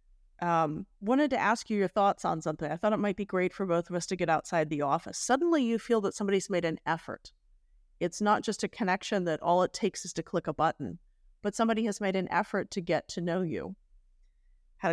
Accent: American